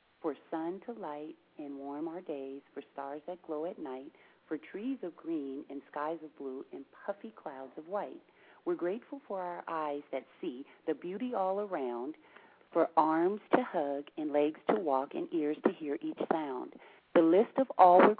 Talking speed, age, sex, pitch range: 190 wpm, 40-59, female, 150-205 Hz